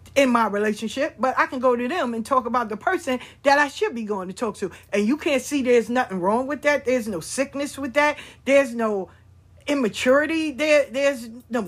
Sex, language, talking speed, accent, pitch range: female, English, 215 wpm, American, 220-295 Hz